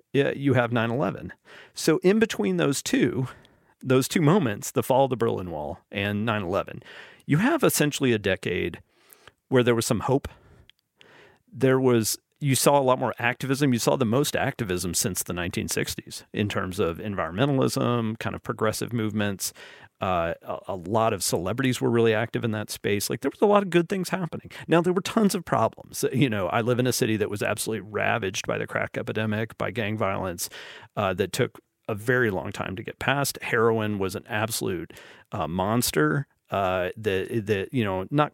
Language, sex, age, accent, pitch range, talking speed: English, male, 40-59, American, 105-140 Hz, 190 wpm